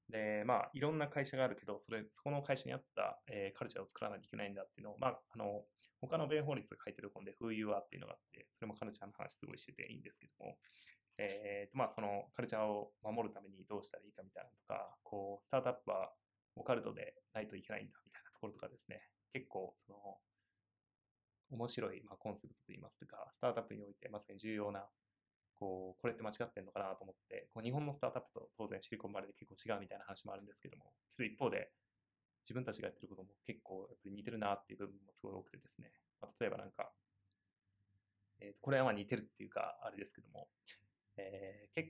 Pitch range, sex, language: 100-125 Hz, male, Japanese